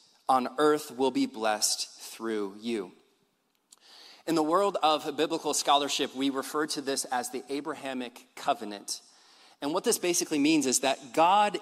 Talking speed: 150 wpm